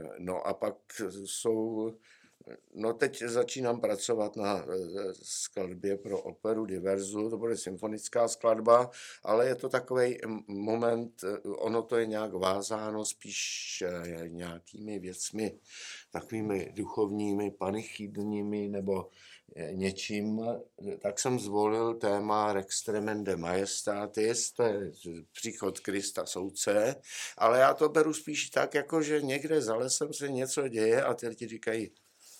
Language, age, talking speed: Czech, 60-79, 120 wpm